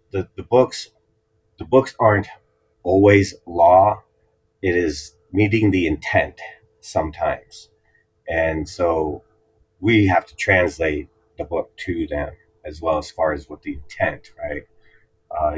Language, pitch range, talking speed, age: English, 80-105 Hz, 130 wpm, 30-49